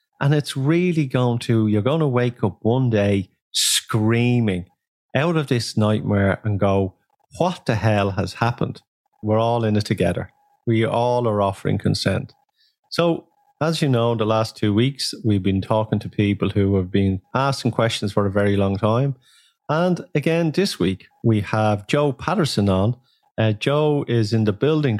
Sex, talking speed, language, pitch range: male, 175 wpm, English, 105-135 Hz